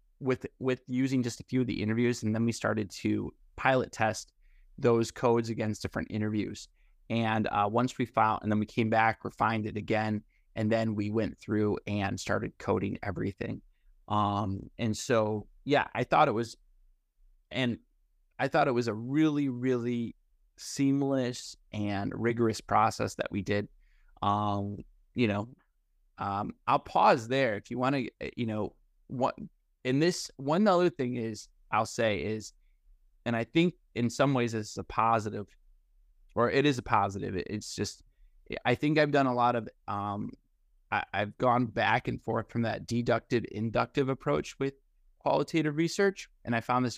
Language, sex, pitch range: English, male, 105-130 Hz